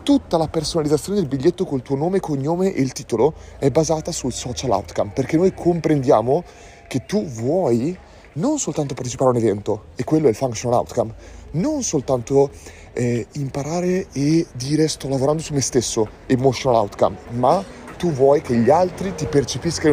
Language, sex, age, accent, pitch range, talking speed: Italian, male, 30-49, native, 115-155 Hz, 170 wpm